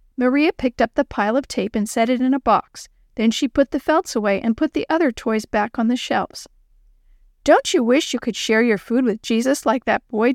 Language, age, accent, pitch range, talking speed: English, 40-59, American, 220-290 Hz, 240 wpm